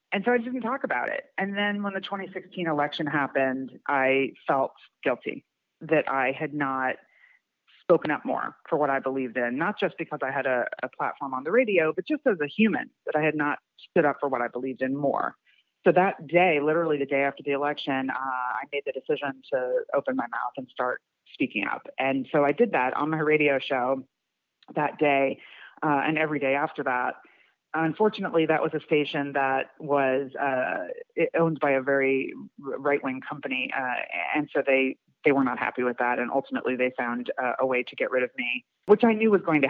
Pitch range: 130-160 Hz